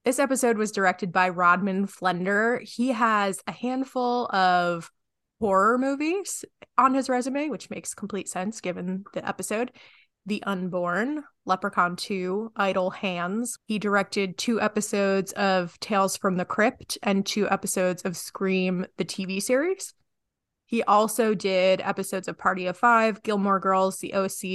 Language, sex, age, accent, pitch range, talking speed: English, female, 20-39, American, 185-215 Hz, 145 wpm